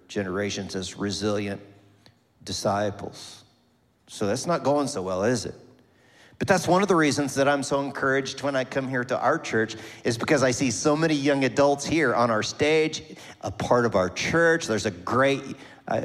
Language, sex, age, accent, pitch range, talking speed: English, male, 40-59, American, 110-135 Hz, 185 wpm